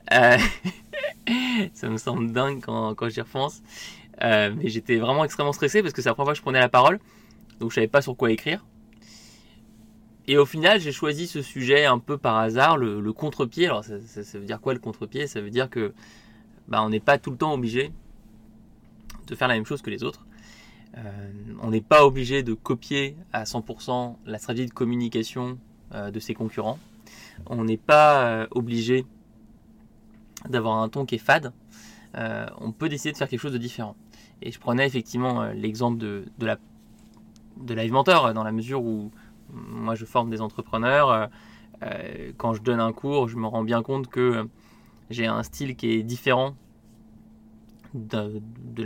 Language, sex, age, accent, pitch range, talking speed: French, male, 20-39, French, 110-130 Hz, 190 wpm